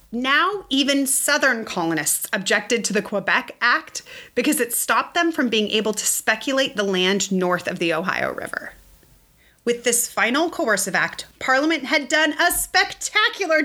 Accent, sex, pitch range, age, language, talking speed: American, female, 215-315 Hz, 30-49, English, 155 wpm